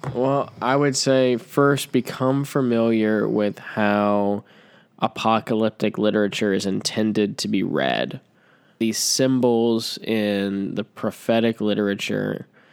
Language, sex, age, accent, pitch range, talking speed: English, male, 10-29, American, 100-115 Hz, 105 wpm